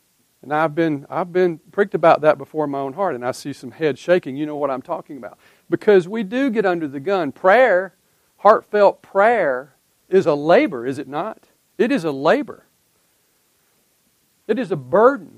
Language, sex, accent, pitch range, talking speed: English, male, American, 140-205 Hz, 190 wpm